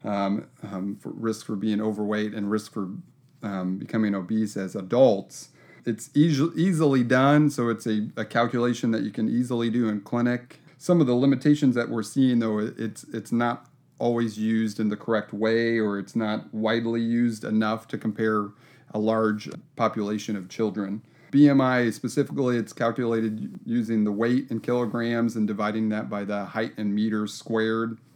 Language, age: English, 30-49